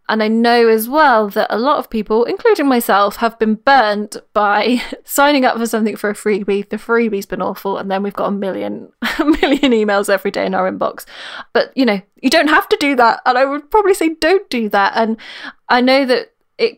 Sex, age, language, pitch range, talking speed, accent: female, 10-29, English, 205-250 Hz, 220 wpm, British